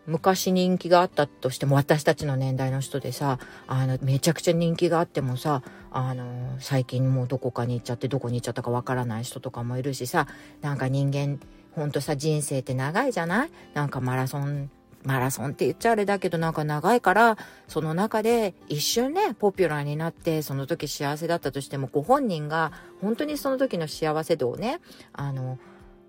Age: 40-59